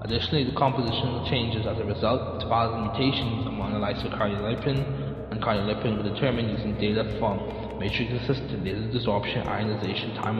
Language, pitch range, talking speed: English, 110-130 Hz, 145 wpm